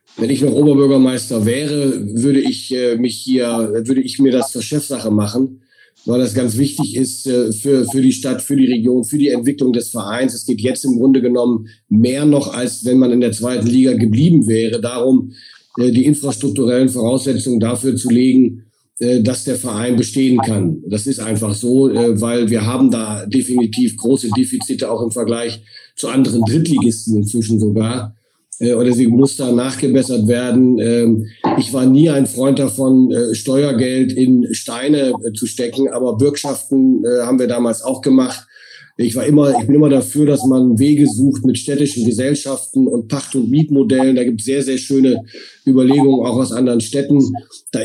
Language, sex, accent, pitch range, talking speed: German, male, German, 120-135 Hz, 175 wpm